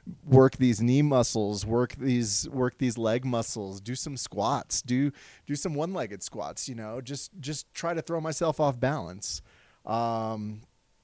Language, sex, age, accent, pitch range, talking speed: English, male, 30-49, American, 110-135 Hz, 160 wpm